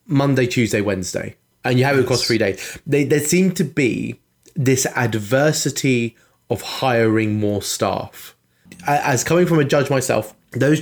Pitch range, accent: 105-135 Hz, British